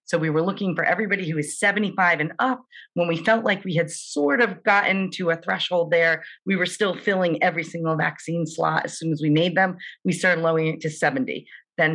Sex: female